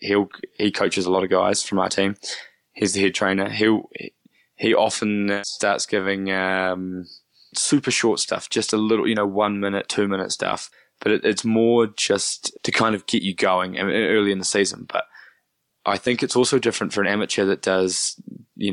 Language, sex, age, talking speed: English, male, 20-39, 190 wpm